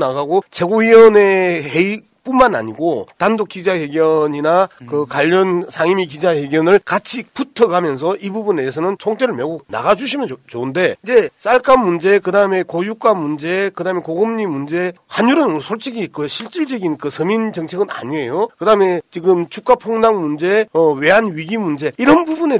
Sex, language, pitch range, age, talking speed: male, English, 175-245 Hz, 40-59, 125 wpm